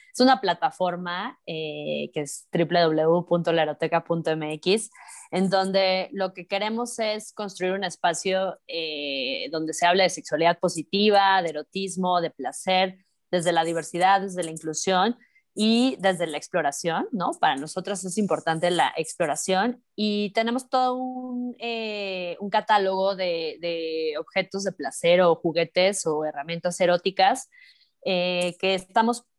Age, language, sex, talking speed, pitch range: 20-39, Spanish, female, 130 wpm, 170-205 Hz